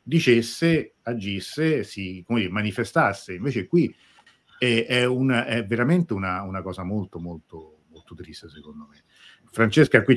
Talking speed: 140 wpm